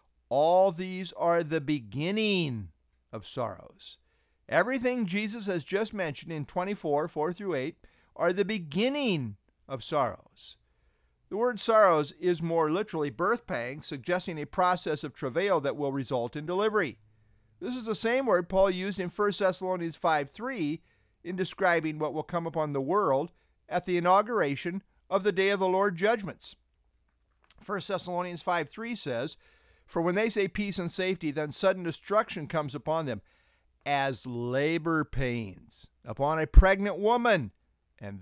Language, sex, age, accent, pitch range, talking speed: English, male, 50-69, American, 145-200 Hz, 150 wpm